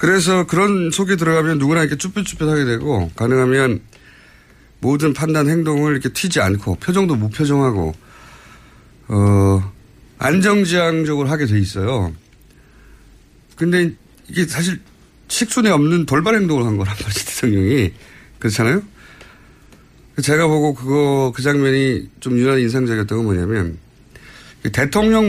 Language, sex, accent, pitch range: Korean, male, native, 125-175 Hz